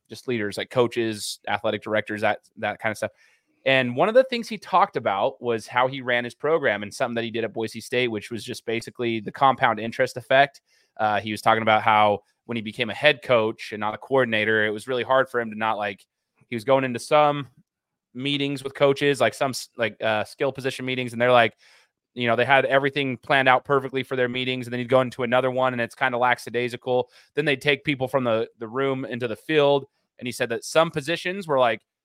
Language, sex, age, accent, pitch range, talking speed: English, male, 20-39, American, 115-135 Hz, 235 wpm